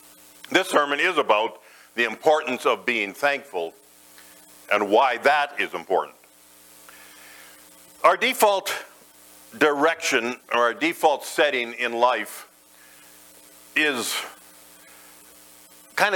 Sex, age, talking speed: male, 50-69, 95 wpm